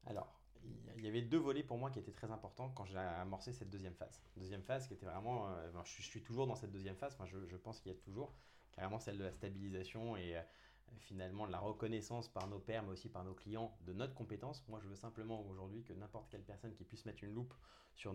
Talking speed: 260 wpm